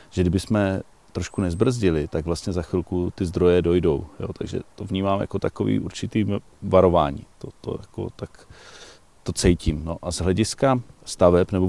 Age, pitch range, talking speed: 40-59, 85-100 Hz, 155 wpm